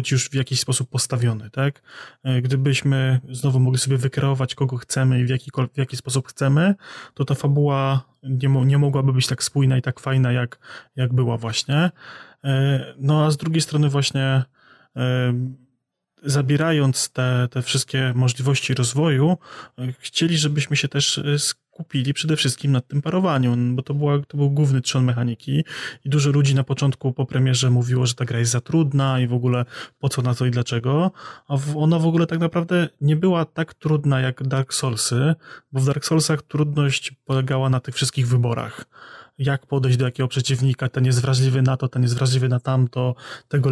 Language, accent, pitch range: Polish, native, 130-145 Hz